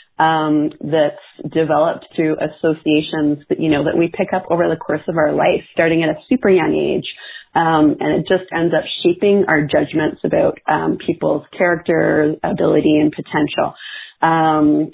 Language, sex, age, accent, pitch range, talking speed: English, female, 30-49, American, 155-175 Hz, 165 wpm